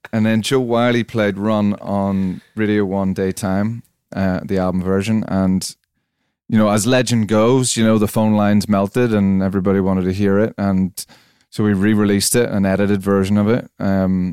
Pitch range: 95-115 Hz